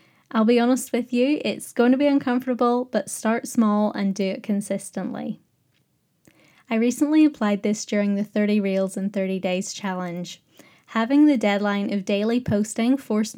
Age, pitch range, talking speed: 10-29, 205-240 Hz, 160 wpm